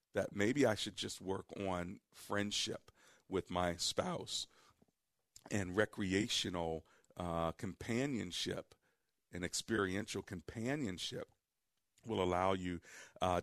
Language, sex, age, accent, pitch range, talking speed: English, male, 50-69, American, 85-100 Hz, 100 wpm